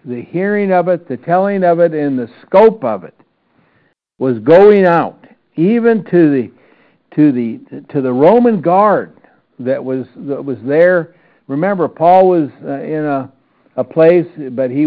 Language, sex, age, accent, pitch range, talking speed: English, male, 60-79, American, 130-170 Hz, 155 wpm